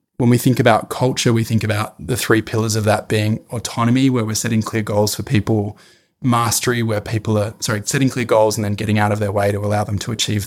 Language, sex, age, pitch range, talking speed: English, male, 20-39, 105-115 Hz, 245 wpm